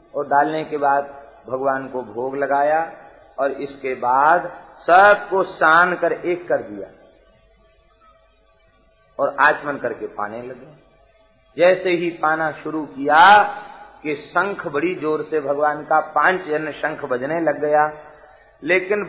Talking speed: 130 wpm